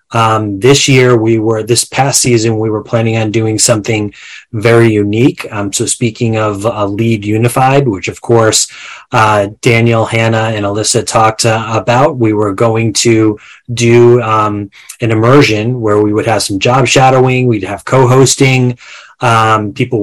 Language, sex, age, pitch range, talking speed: English, male, 30-49, 105-125 Hz, 170 wpm